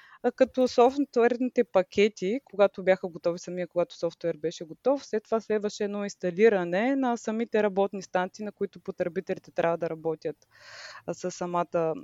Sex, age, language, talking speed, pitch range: female, 20-39, Bulgarian, 140 wpm, 185-225 Hz